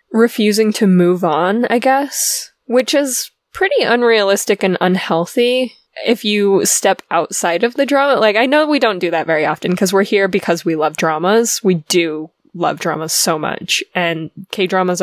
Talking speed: 170 wpm